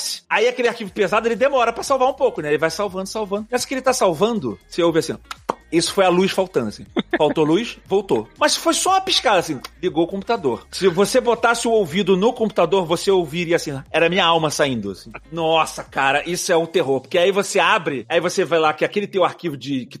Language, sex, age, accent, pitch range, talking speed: Portuguese, male, 40-59, Brazilian, 175-245 Hz, 230 wpm